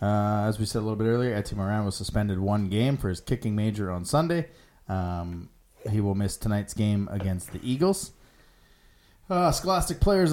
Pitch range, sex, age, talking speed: 105-145 Hz, male, 20-39, 185 wpm